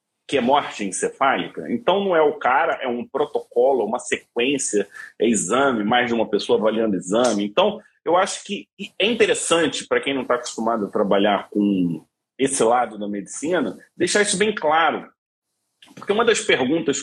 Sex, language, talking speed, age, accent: male, Portuguese, 170 wpm, 40-59, Brazilian